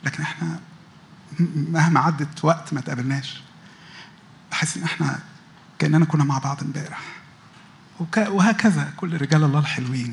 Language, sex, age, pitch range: Arabic, male, 50-69, 145-175 Hz